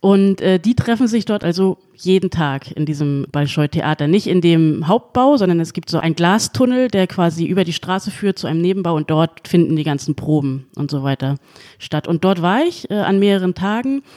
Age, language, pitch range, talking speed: 30-49, German, 160-195 Hz, 210 wpm